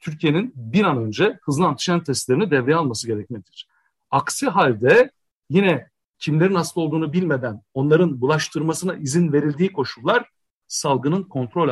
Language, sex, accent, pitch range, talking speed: Turkish, male, native, 135-180 Hz, 125 wpm